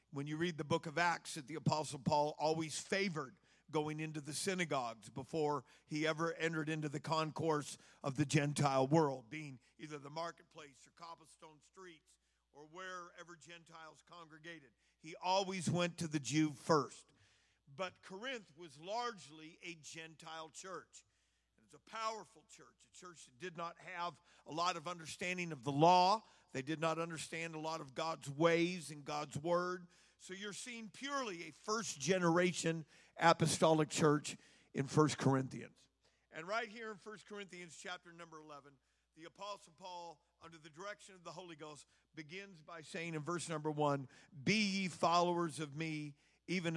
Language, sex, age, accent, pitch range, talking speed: English, male, 50-69, American, 150-180 Hz, 160 wpm